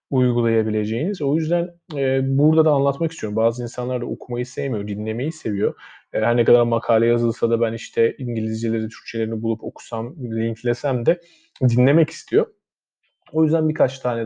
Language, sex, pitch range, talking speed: Turkish, male, 115-145 Hz, 145 wpm